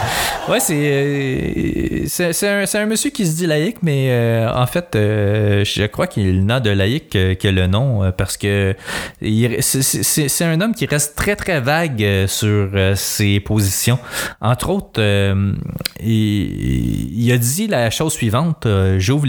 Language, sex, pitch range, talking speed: French, male, 105-140 Hz, 165 wpm